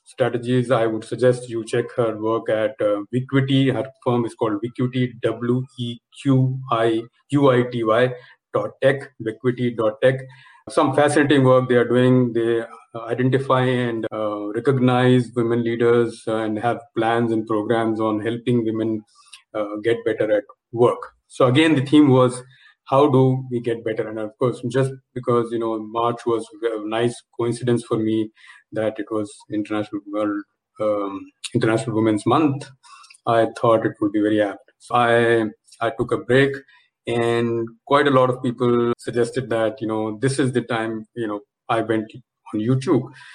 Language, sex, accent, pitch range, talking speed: English, male, Indian, 110-130 Hz, 165 wpm